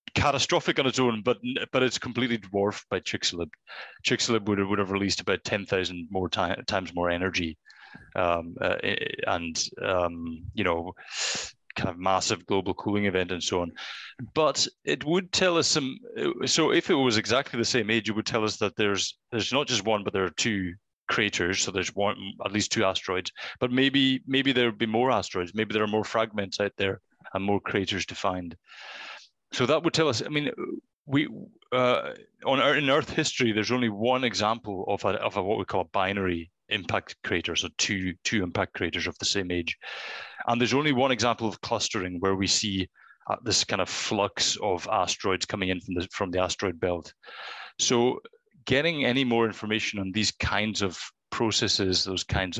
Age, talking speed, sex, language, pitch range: 30-49, 195 wpm, male, English, 95-125 Hz